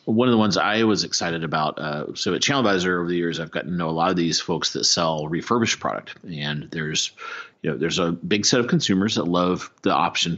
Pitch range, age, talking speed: 80-100 Hz, 30-49, 245 wpm